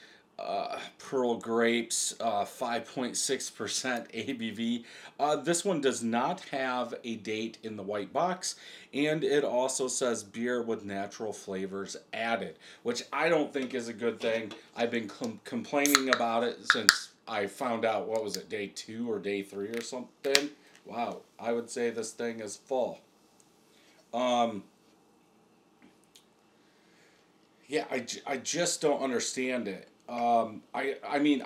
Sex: male